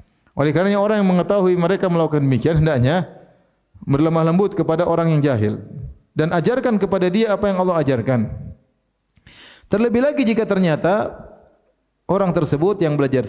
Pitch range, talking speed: 125-170 Hz, 140 wpm